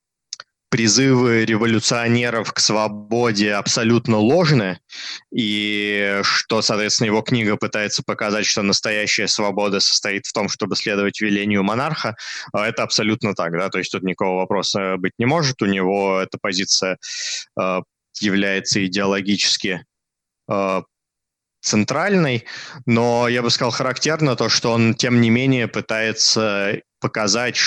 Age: 20-39